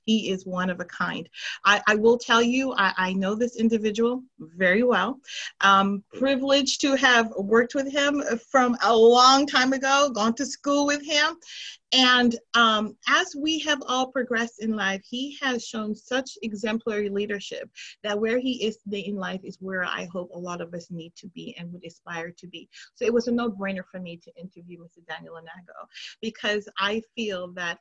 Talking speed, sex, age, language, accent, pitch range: 195 wpm, female, 30-49, English, American, 185-255 Hz